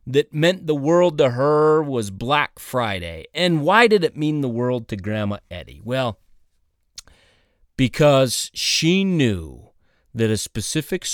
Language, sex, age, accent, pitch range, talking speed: English, male, 30-49, American, 110-165 Hz, 140 wpm